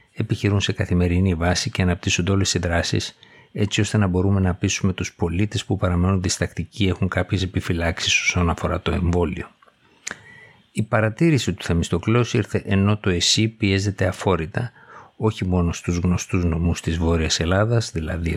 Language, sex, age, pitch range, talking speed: Greek, male, 60-79, 85-105 Hz, 150 wpm